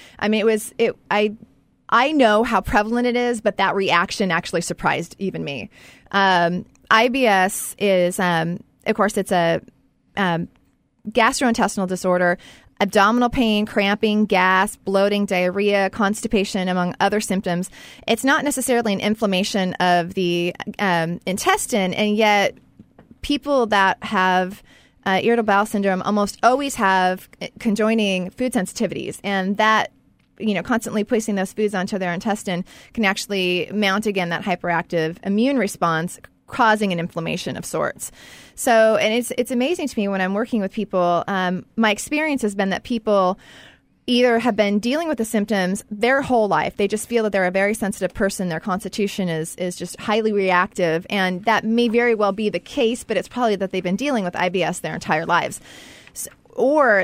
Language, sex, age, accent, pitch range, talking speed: English, female, 30-49, American, 185-225 Hz, 165 wpm